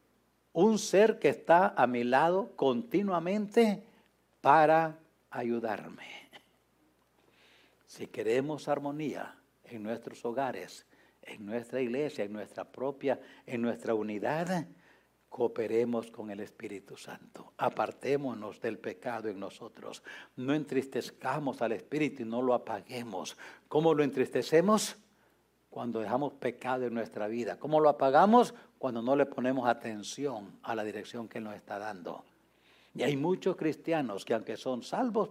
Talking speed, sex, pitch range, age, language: 125 wpm, male, 120-165 Hz, 60-79, English